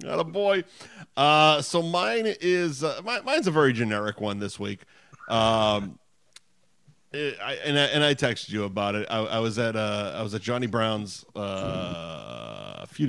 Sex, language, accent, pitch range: male, English, American, 105-130 Hz